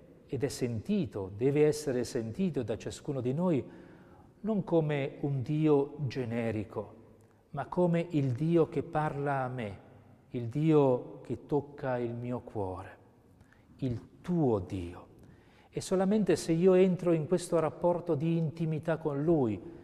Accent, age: native, 40-59